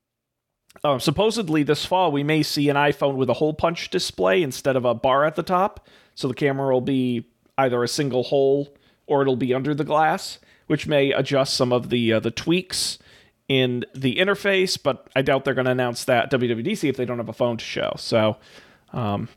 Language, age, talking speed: English, 40-59, 210 wpm